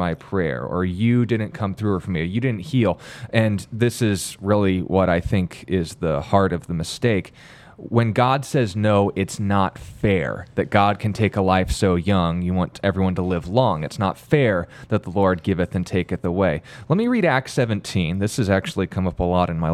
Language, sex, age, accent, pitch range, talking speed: English, male, 20-39, American, 95-120 Hz, 215 wpm